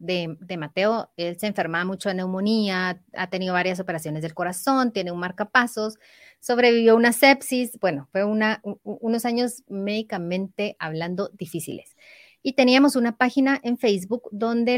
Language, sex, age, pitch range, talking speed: Spanish, female, 30-49, 185-240 Hz, 150 wpm